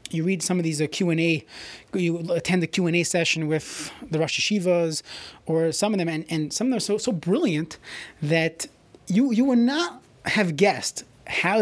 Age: 30-49